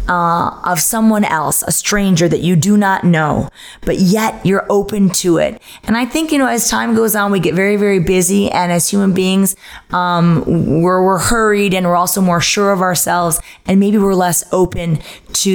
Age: 20-39